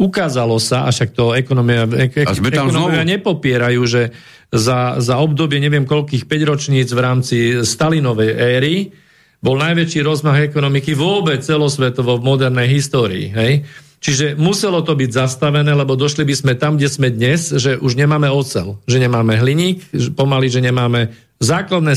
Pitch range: 125-155 Hz